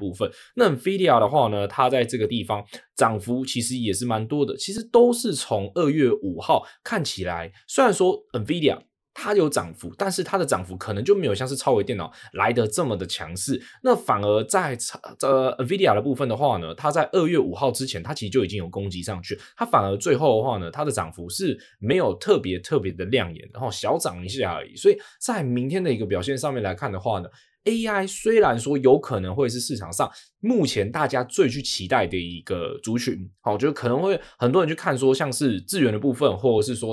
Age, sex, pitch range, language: 20-39, male, 100-145 Hz, Chinese